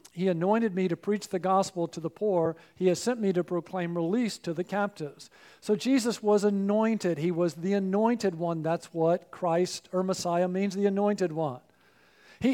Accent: American